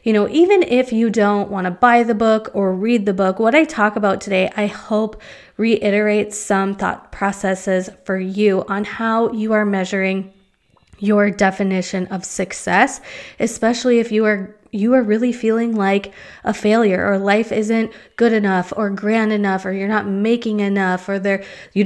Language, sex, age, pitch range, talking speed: English, female, 20-39, 195-225 Hz, 175 wpm